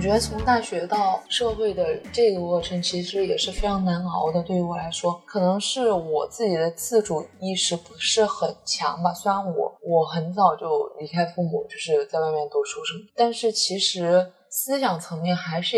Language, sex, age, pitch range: Chinese, female, 20-39, 175-225 Hz